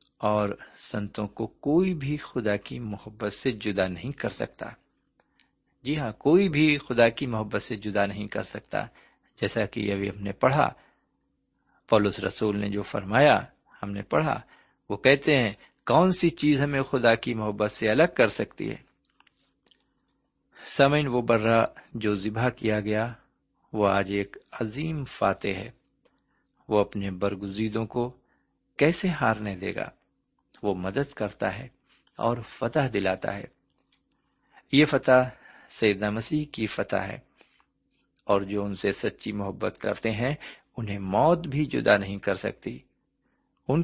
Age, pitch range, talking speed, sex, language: 50-69, 100-130 Hz, 145 wpm, male, Urdu